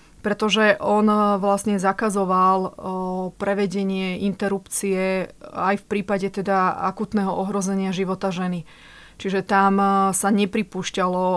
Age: 30-49